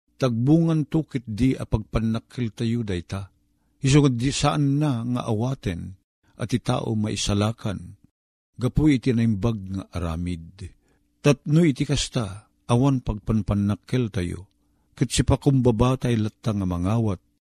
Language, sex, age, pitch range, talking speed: Filipino, male, 50-69, 100-140 Hz, 115 wpm